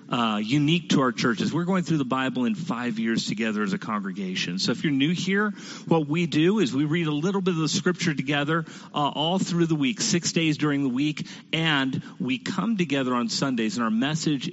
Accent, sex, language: American, male, English